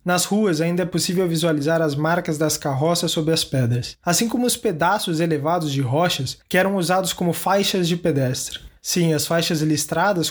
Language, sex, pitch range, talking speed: Portuguese, male, 160-195 Hz, 180 wpm